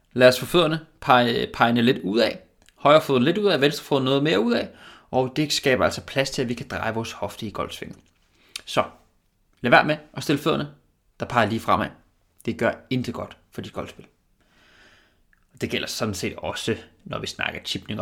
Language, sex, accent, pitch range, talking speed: Danish, male, native, 110-145 Hz, 200 wpm